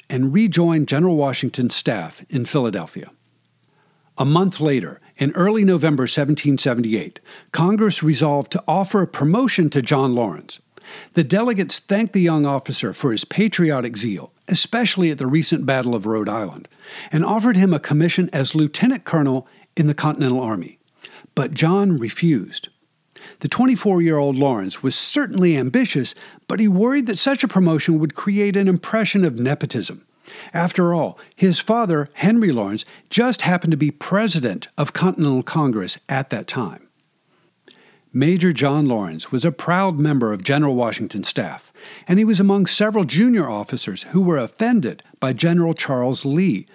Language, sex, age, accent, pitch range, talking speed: English, male, 50-69, American, 135-190 Hz, 150 wpm